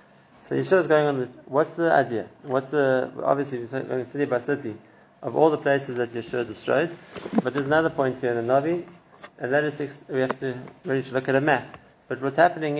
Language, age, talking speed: English, 30-49, 215 wpm